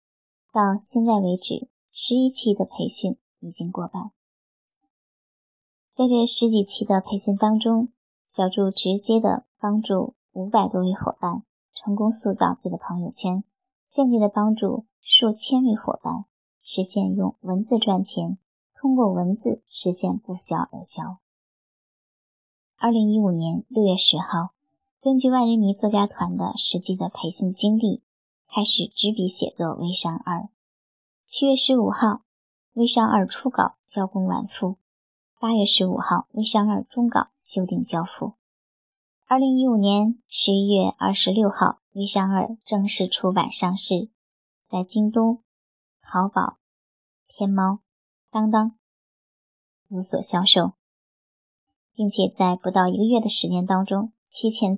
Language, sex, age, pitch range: Chinese, male, 10-29, 190-230 Hz